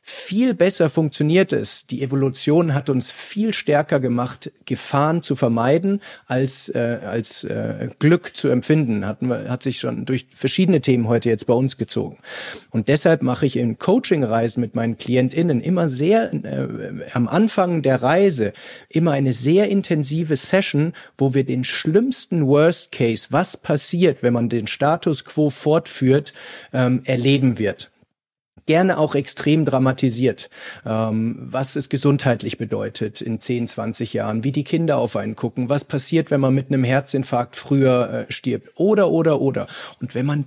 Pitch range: 120-160 Hz